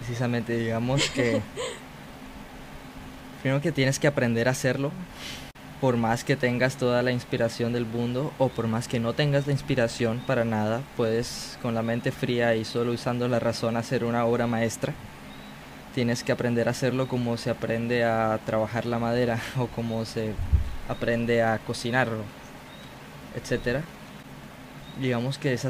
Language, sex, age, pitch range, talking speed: Spanish, male, 20-39, 115-130 Hz, 150 wpm